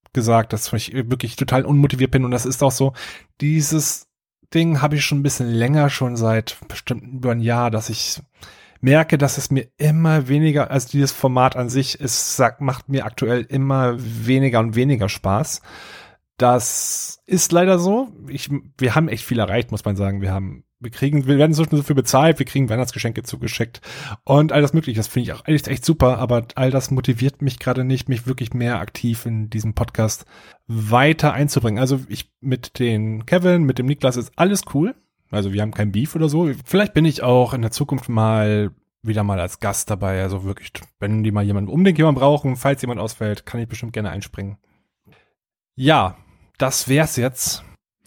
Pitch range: 110-140 Hz